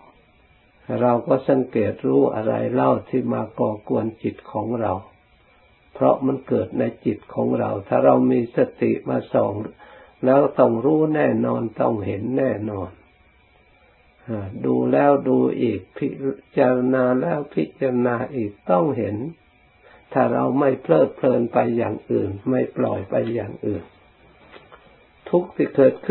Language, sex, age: Thai, male, 60-79